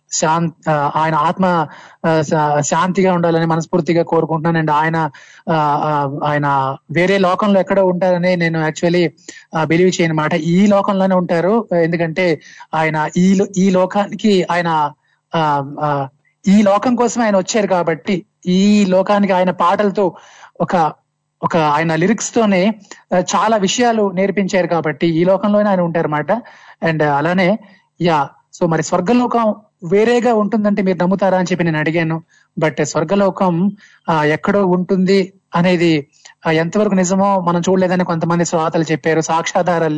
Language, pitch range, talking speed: Telugu, 165-200 Hz, 120 wpm